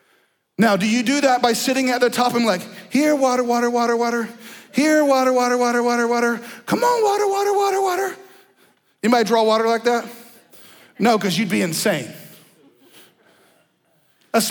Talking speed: 165 wpm